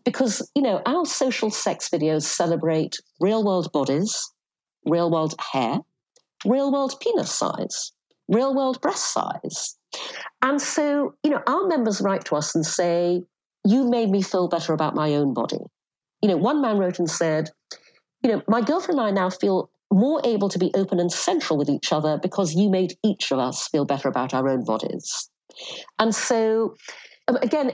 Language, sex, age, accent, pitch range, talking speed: English, female, 50-69, British, 170-265 Hz, 170 wpm